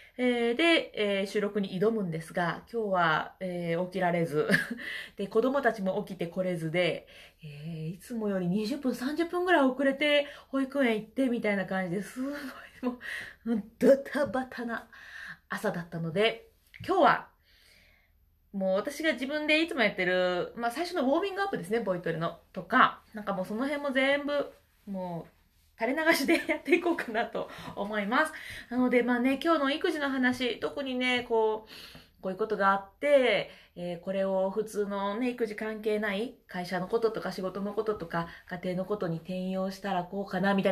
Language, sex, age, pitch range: Japanese, female, 20-39, 185-270 Hz